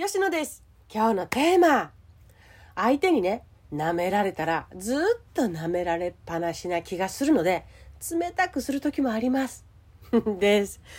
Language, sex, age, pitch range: Japanese, female, 40-59, 155-245 Hz